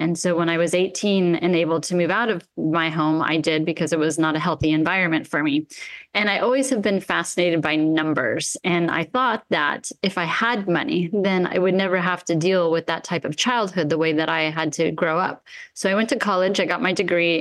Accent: American